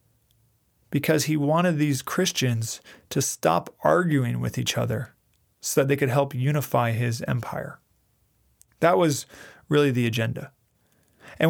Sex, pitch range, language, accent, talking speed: male, 120-145 Hz, English, American, 130 wpm